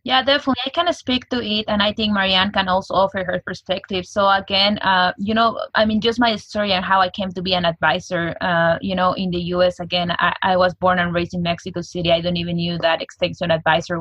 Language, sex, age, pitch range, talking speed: English, female, 20-39, 165-190 Hz, 255 wpm